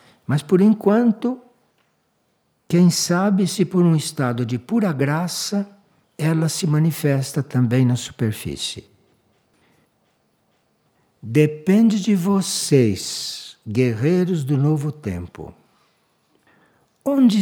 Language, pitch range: Portuguese, 125-185 Hz